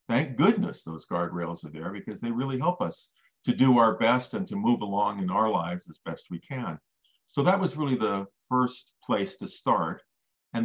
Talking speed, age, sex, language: 205 wpm, 50-69, male, English